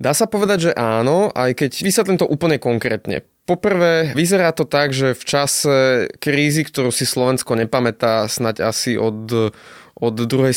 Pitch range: 120-145 Hz